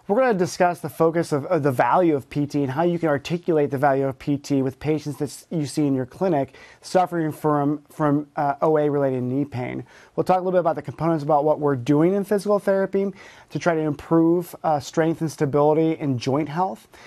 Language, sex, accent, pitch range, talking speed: English, male, American, 145-170 Hz, 220 wpm